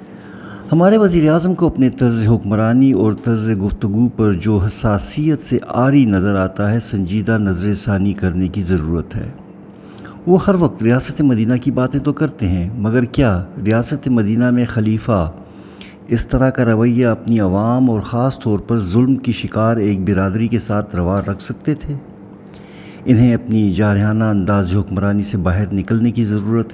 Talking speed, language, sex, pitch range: 160 wpm, Urdu, male, 100-125 Hz